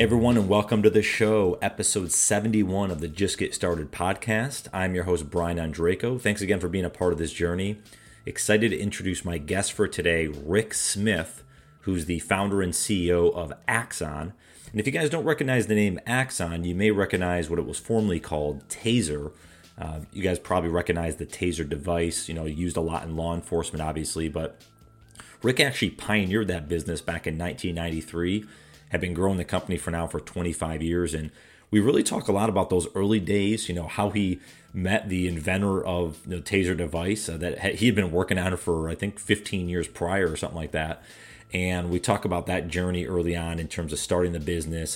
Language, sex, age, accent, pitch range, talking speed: English, male, 30-49, American, 85-100 Hz, 200 wpm